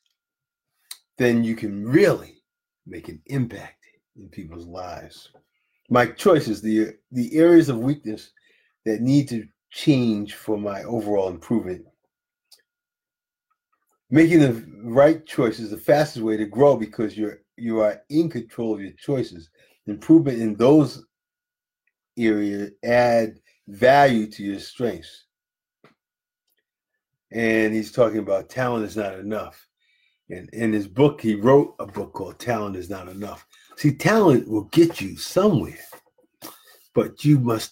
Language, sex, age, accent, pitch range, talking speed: English, male, 40-59, American, 105-160 Hz, 130 wpm